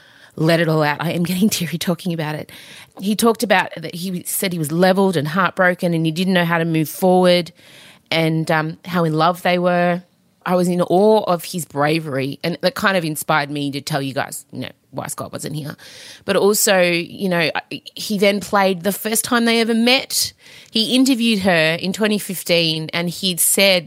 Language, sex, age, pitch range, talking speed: English, female, 30-49, 160-195 Hz, 205 wpm